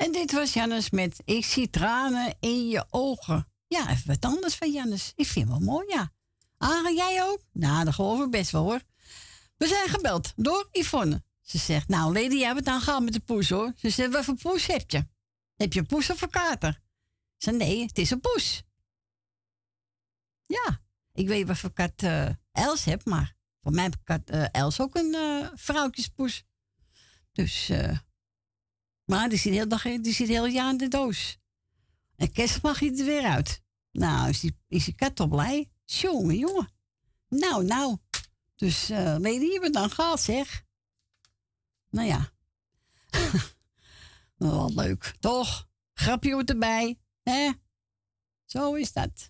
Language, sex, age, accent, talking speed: Dutch, female, 60-79, Dutch, 170 wpm